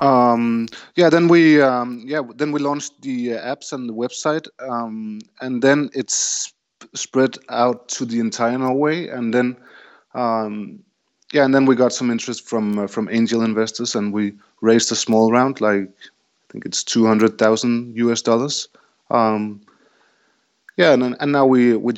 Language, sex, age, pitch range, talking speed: English, male, 30-49, 105-130 Hz, 170 wpm